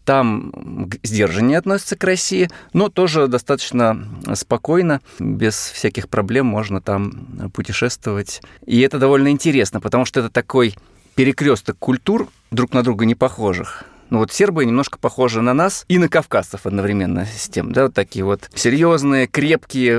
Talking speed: 145 wpm